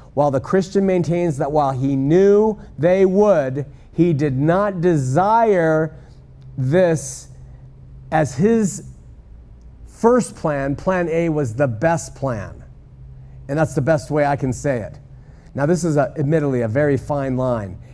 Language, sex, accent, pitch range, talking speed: English, male, American, 135-175 Hz, 140 wpm